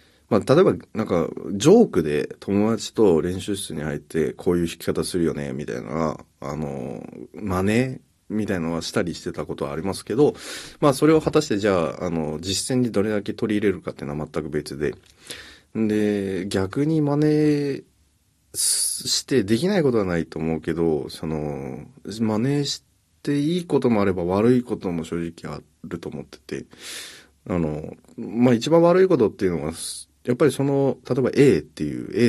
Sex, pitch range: male, 80-120 Hz